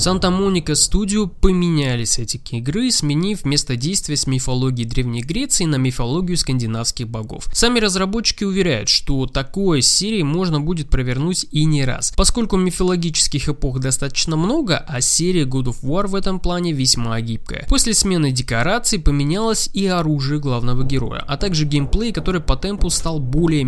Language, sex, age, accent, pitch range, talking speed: Russian, male, 20-39, native, 130-185 Hz, 150 wpm